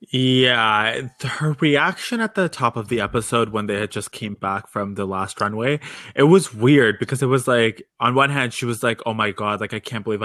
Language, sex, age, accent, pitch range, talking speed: English, male, 20-39, American, 115-150 Hz, 230 wpm